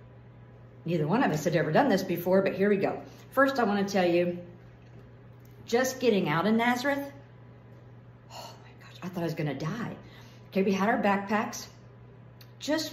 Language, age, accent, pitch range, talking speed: English, 50-69, American, 130-210 Hz, 180 wpm